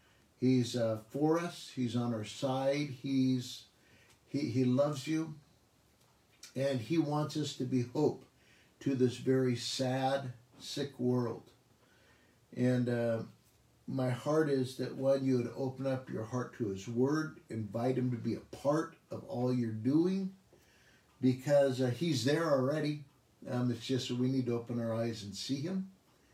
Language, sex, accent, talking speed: English, male, American, 160 wpm